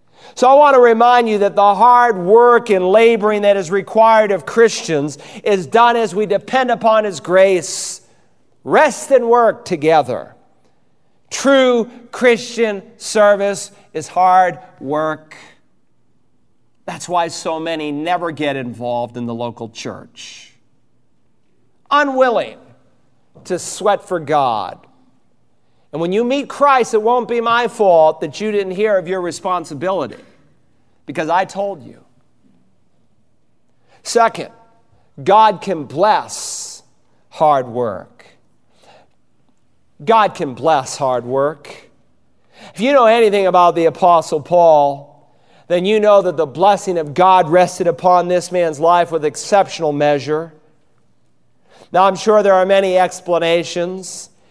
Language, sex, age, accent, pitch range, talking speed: English, male, 40-59, American, 160-220 Hz, 125 wpm